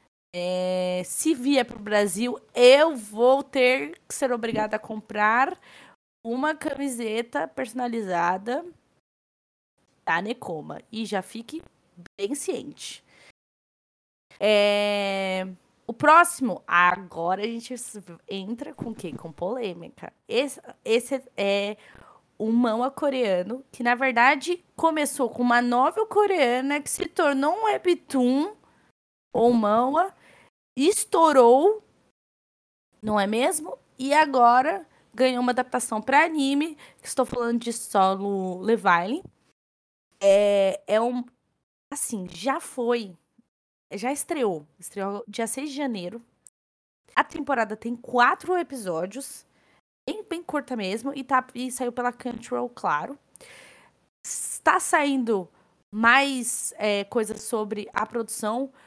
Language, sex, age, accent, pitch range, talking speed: Portuguese, female, 20-39, Brazilian, 210-280 Hz, 115 wpm